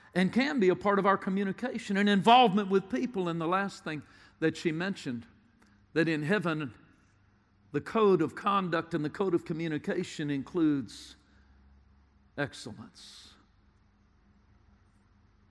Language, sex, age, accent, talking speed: English, male, 60-79, American, 130 wpm